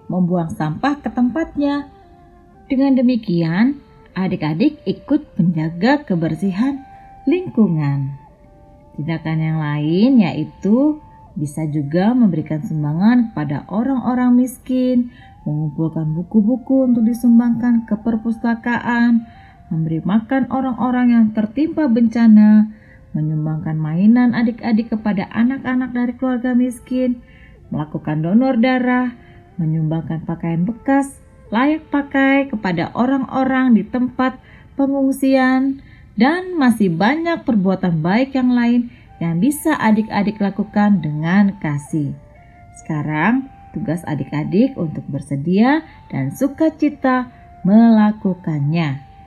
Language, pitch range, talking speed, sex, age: Indonesian, 165-260 Hz, 95 wpm, female, 30-49